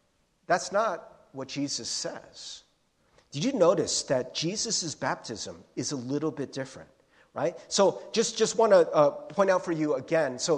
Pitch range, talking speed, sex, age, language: 175-260 Hz, 160 wpm, male, 40-59, English